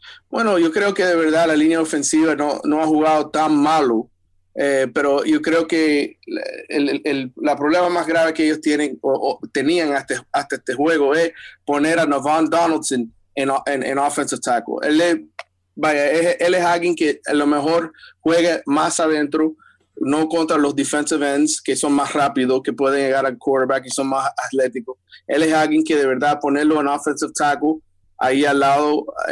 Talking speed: 190 wpm